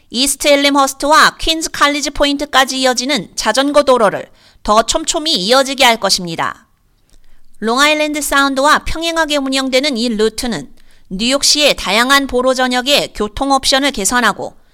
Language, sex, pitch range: Korean, female, 245-290 Hz